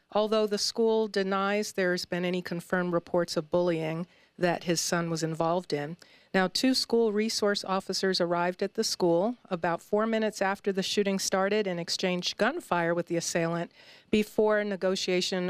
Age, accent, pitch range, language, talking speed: 40-59, American, 175-210 Hz, English, 165 wpm